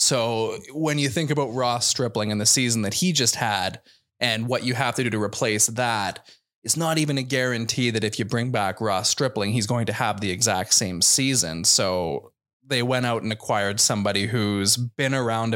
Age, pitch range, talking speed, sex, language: 20-39, 110-130 Hz, 205 wpm, male, English